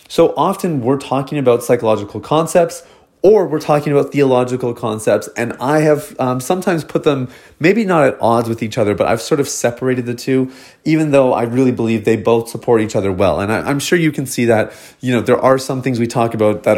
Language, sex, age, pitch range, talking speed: English, male, 30-49, 115-140 Hz, 225 wpm